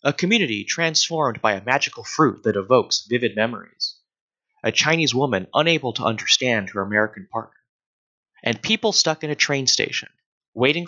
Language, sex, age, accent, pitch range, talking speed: English, male, 30-49, American, 115-170 Hz, 155 wpm